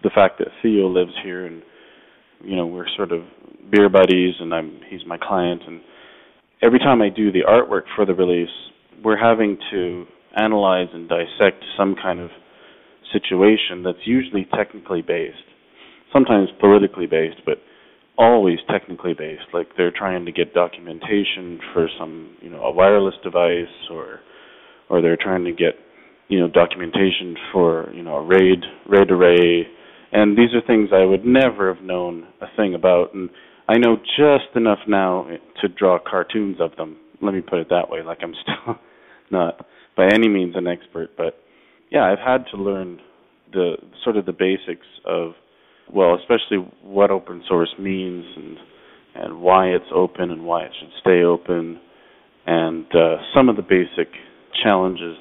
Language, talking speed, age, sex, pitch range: English, 165 wpm, 30-49, male, 85-105 Hz